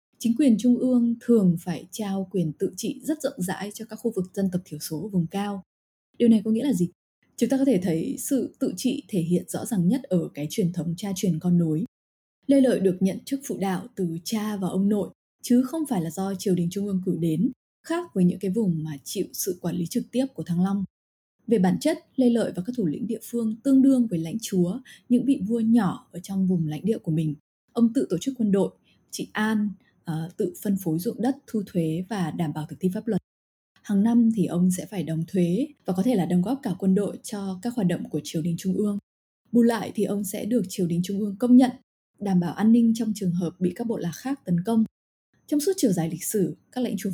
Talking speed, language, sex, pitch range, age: 255 wpm, Vietnamese, female, 180-230 Hz, 20-39